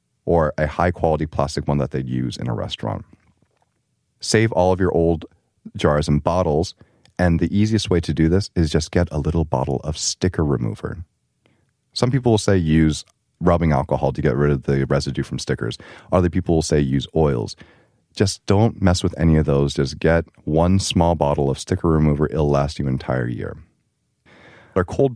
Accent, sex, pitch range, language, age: American, male, 75-95 Hz, Korean, 30-49